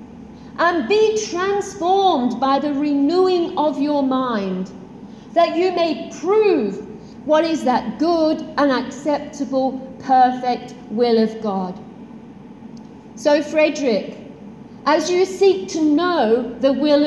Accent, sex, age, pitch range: British, female, 50-69, 225-310 Hz